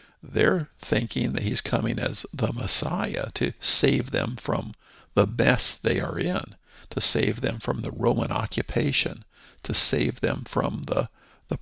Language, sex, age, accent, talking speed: English, male, 50-69, American, 155 wpm